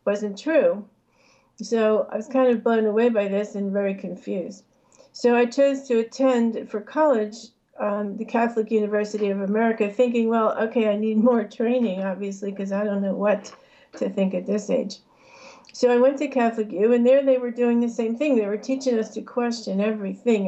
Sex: female